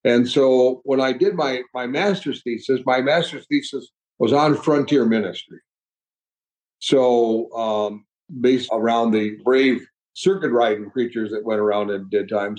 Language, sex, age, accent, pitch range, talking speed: English, male, 60-79, American, 115-165 Hz, 150 wpm